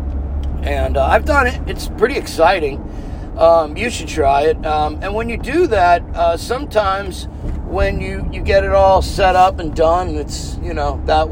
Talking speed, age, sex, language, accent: 185 wpm, 50-69, male, English, American